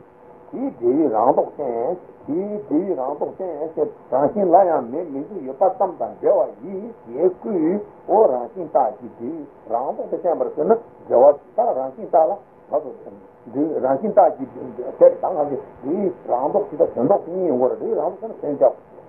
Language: Italian